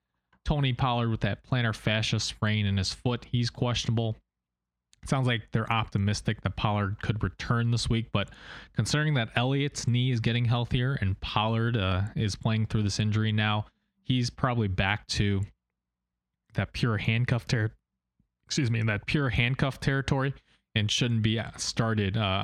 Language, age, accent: English, 20-39, American